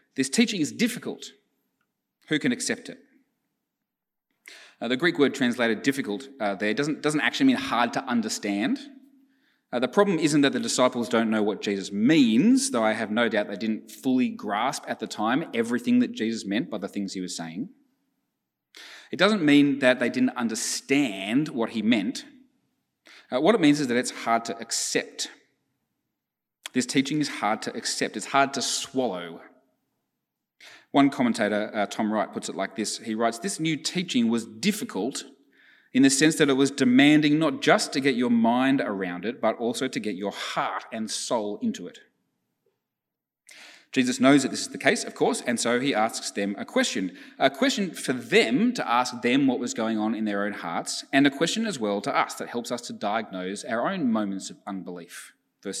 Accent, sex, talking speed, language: Australian, male, 190 wpm, English